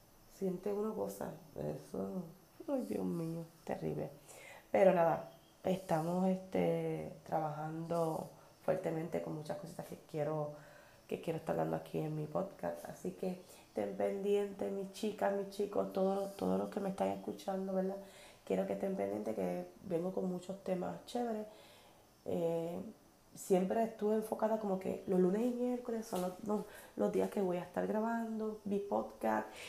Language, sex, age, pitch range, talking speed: Spanish, female, 30-49, 150-205 Hz, 150 wpm